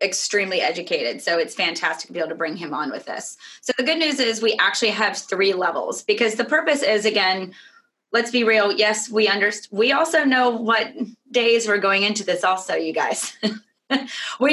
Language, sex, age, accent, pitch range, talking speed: English, female, 20-39, American, 200-235 Hz, 200 wpm